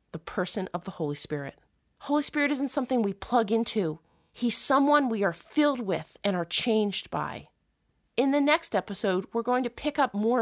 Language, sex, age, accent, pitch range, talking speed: English, female, 30-49, American, 185-260 Hz, 190 wpm